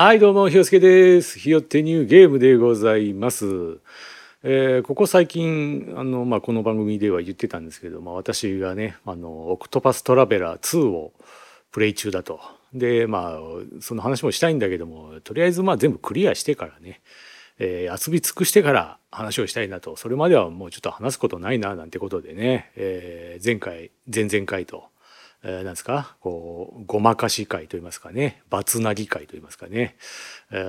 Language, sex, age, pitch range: Japanese, male, 40-59, 95-155 Hz